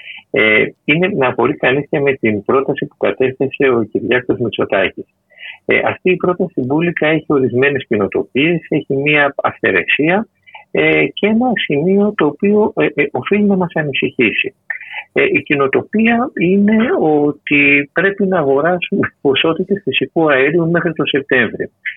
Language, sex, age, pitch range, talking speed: Greek, male, 50-69, 135-200 Hz, 135 wpm